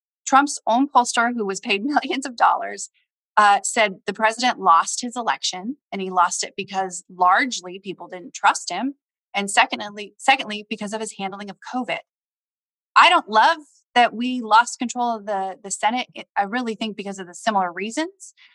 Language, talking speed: English, 180 wpm